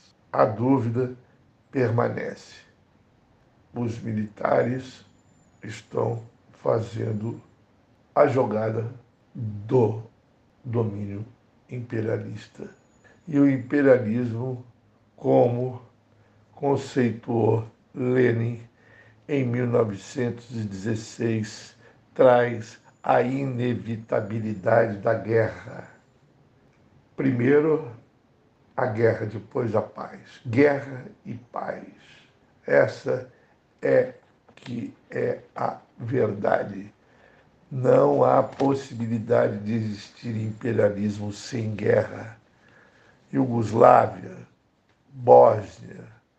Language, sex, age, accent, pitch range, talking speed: Portuguese, male, 60-79, Brazilian, 110-125 Hz, 65 wpm